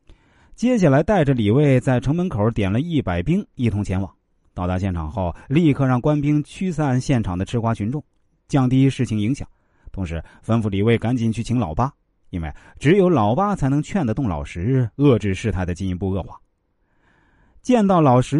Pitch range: 95-150 Hz